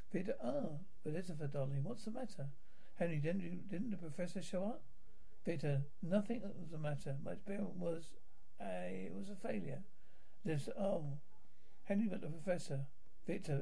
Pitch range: 150-200 Hz